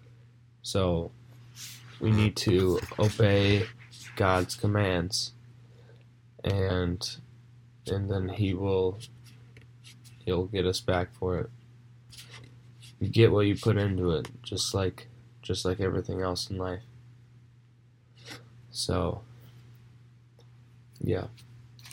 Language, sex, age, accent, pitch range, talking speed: English, male, 10-29, American, 105-120 Hz, 95 wpm